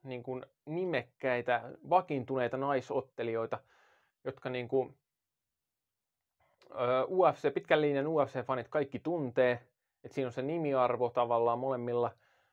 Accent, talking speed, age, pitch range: native, 100 wpm, 20-39, 120-140 Hz